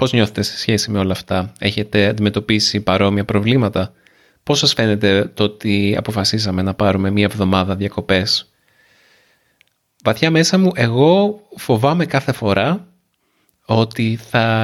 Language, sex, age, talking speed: Greek, male, 30-49, 125 wpm